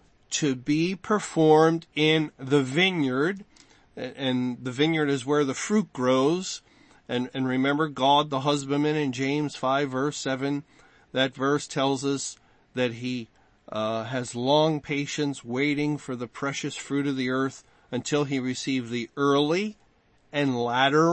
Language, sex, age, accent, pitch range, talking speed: English, male, 40-59, American, 130-165 Hz, 140 wpm